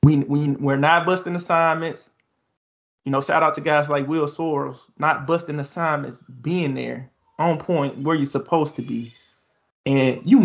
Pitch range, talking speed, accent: 140-170 Hz, 165 wpm, American